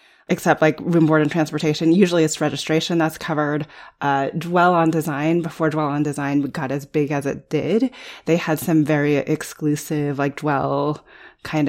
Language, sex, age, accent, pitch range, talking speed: English, female, 30-49, American, 145-170 Hz, 170 wpm